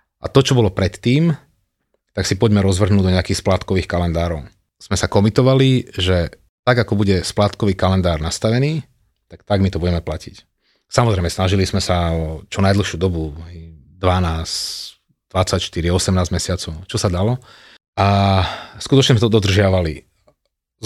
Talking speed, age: 140 wpm, 30-49